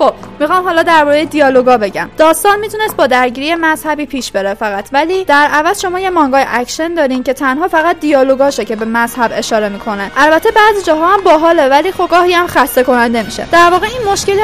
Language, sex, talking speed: Persian, female, 195 wpm